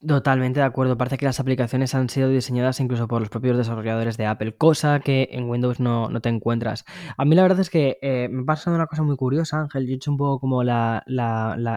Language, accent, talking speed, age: Spanish, Spanish, 245 wpm, 10-29